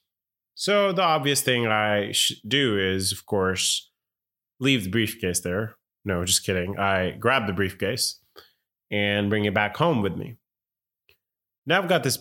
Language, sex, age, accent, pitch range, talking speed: English, male, 20-39, American, 100-130 Hz, 155 wpm